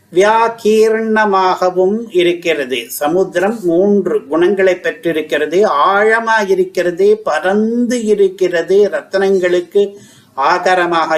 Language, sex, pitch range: Tamil, male, 175-225 Hz